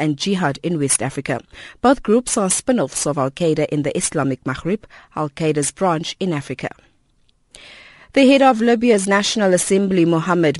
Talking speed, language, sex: 145 wpm, English, female